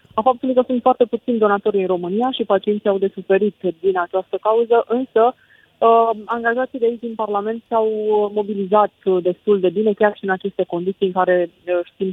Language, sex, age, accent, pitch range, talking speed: Romanian, female, 20-39, native, 190-220 Hz, 185 wpm